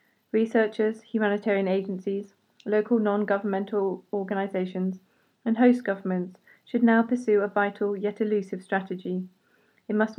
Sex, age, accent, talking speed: female, 30-49, British, 110 wpm